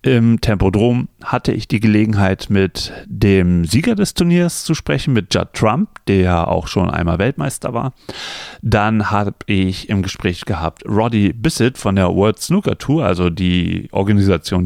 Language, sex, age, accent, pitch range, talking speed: German, male, 40-59, German, 90-125 Hz, 155 wpm